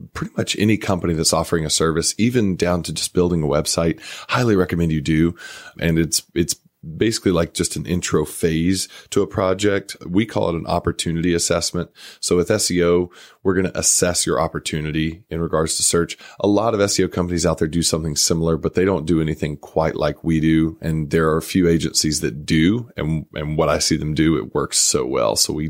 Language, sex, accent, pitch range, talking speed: English, male, American, 80-90 Hz, 210 wpm